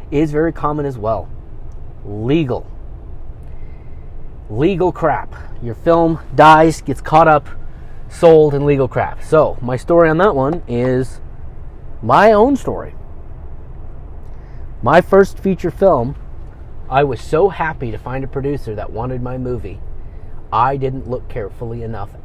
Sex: male